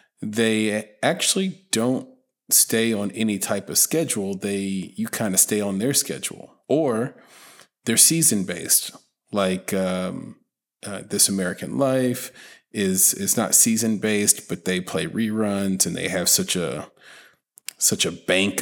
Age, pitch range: 40-59, 95-115 Hz